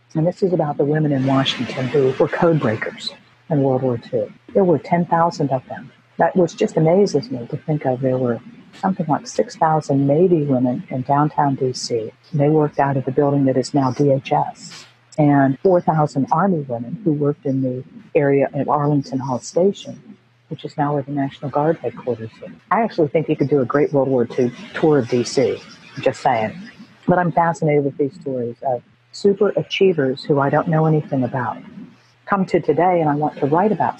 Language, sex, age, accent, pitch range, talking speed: English, female, 50-69, American, 135-165 Hz, 195 wpm